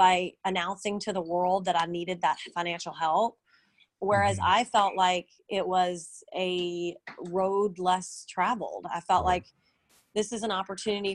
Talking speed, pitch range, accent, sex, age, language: 150 wpm, 175-205 Hz, American, female, 30-49, English